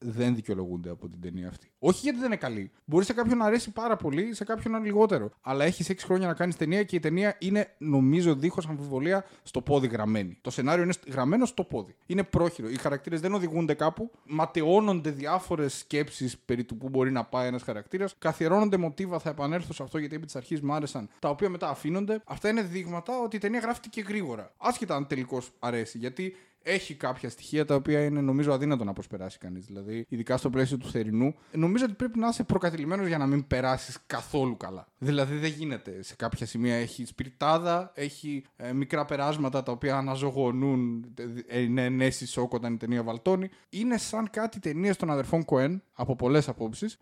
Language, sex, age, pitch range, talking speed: Greek, male, 20-39, 130-185 Hz, 195 wpm